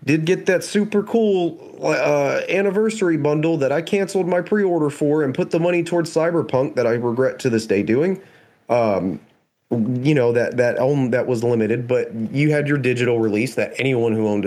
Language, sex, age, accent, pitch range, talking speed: English, male, 30-49, American, 110-155 Hz, 195 wpm